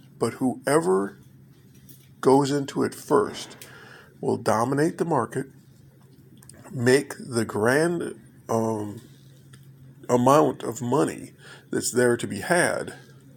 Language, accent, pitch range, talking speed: English, American, 120-135 Hz, 100 wpm